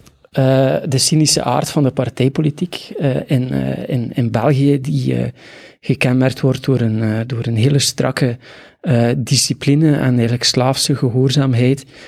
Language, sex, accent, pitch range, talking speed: Dutch, male, Dutch, 125-145 Hz, 150 wpm